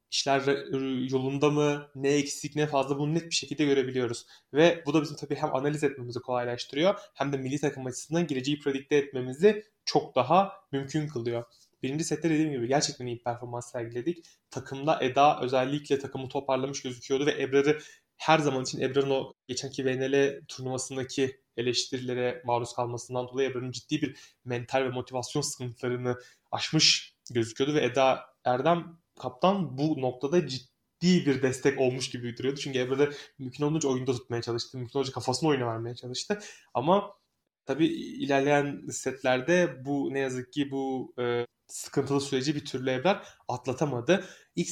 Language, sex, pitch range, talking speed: Turkish, male, 125-145 Hz, 150 wpm